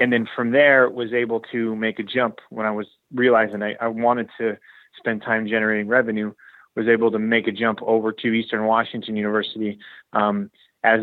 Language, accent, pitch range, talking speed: English, American, 110-120 Hz, 190 wpm